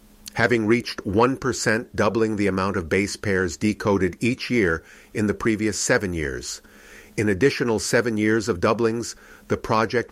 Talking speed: 150 wpm